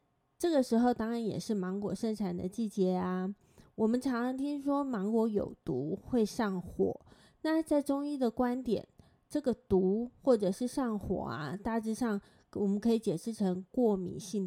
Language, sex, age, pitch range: Chinese, female, 20-39, 190-240 Hz